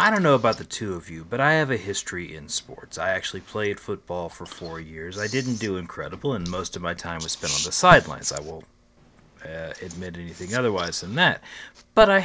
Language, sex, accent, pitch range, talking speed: English, male, American, 95-140 Hz, 225 wpm